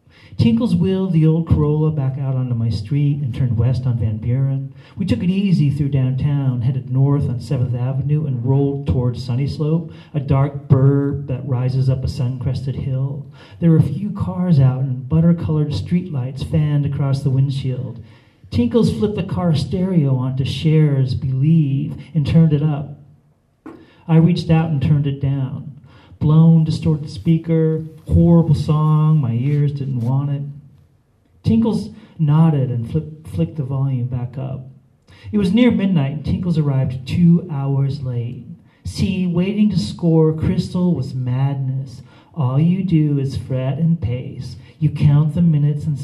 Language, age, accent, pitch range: English, 40-59, American, 130-160 Hz